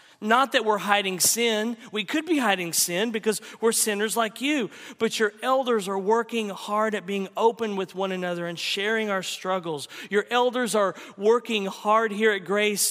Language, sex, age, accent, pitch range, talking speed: English, male, 40-59, American, 185-230 Hz, 180 wpm